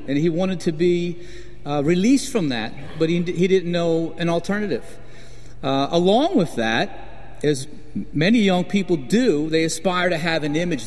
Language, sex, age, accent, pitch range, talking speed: English, male, 50-69, American, 140-195 Hz, 170 wpm